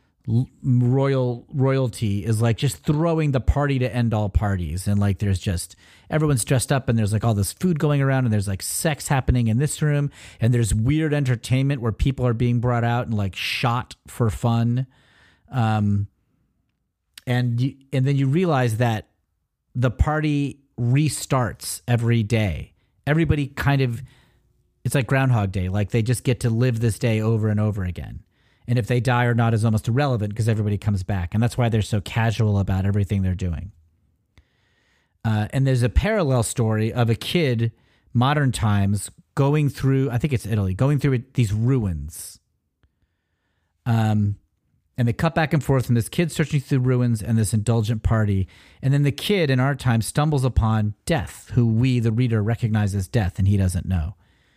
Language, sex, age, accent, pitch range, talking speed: English, male, 40-59, American, 105-130 Hz, 180 wpm